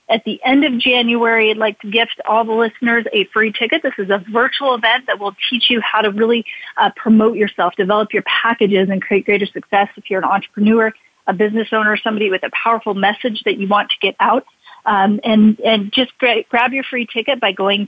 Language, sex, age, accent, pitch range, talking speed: English, female, 30-49, American, 205-255 Hz, 220 wpm